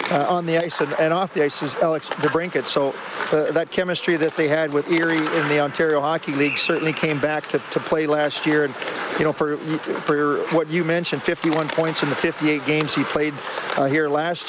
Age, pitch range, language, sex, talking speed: 50-69, 145-170 Hz, English, male, 220 wpm